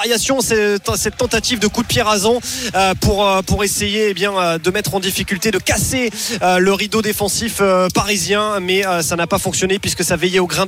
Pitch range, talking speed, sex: 180-220 Hz, 220 wpm, male